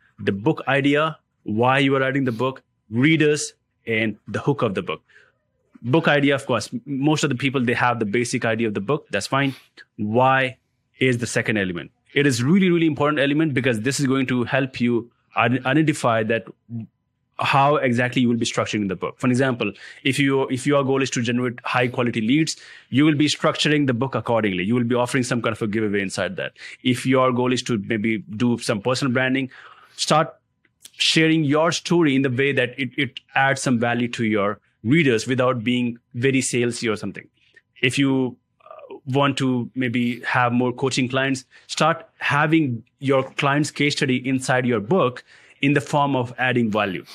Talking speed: 190 wpm